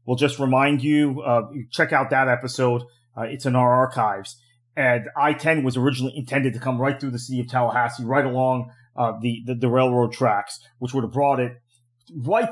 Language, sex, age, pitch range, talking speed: English, male, 30-49, 120-140 Hz, 195 wpm